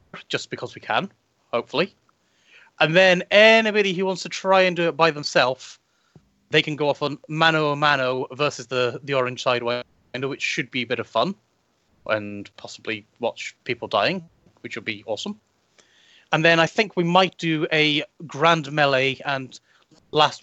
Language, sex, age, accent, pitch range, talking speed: English, male, 30-49, British, 130-165 Hz, 170 wpm